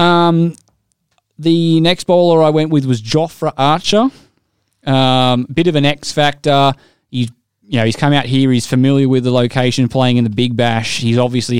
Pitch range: 125-145 Hz